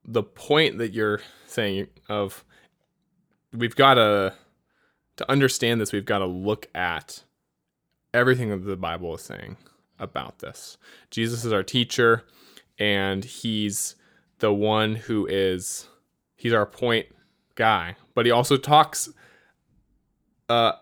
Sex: male